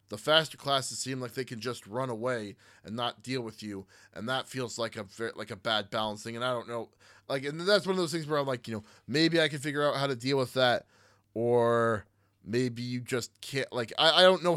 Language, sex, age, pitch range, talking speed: English, male, 20-39, 105-135 Hz, 245 wpm